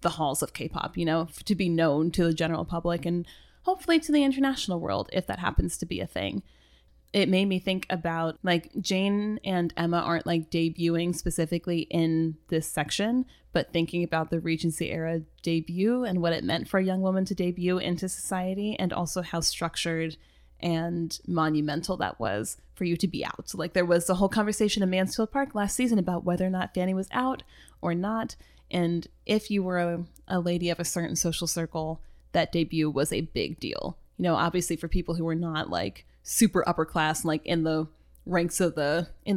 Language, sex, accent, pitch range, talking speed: English, female, American, 160-185 Hz, 200 wpm